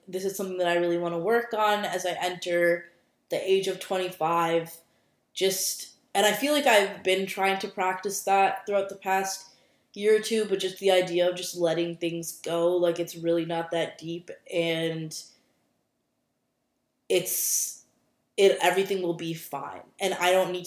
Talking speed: 175 wpm